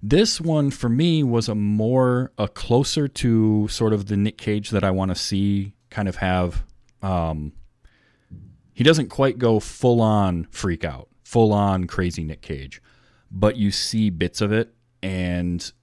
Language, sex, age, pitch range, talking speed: English, male, 30-49, 90-110 Hz, 165 wpm